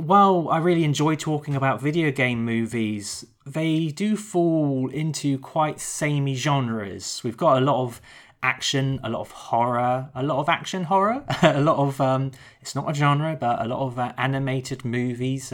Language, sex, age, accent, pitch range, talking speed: English, male, 20-39, British, 120-155 Hz, 180 wpm